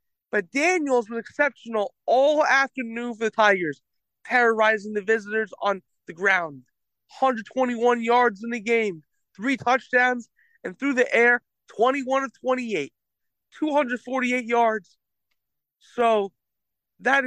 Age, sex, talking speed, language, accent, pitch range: 20-39, male, 115 wpm, English, American, 215-260 Hz